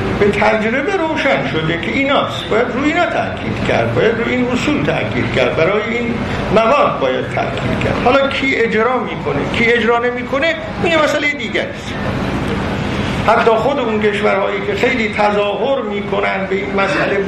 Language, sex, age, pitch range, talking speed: Persian, male, 50-69, 185-245 Hz, 165 wpm